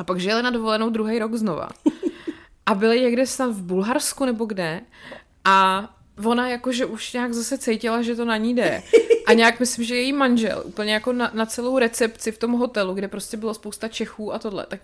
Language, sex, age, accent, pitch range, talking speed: Czech, female, 20-39, native, 210-300 Hz, 205 wpm